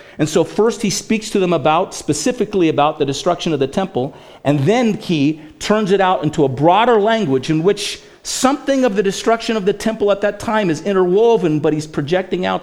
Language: English